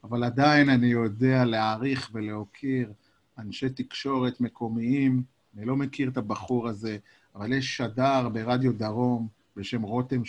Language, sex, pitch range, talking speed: Hebrew, male, 115-140 Hz, 130 wpm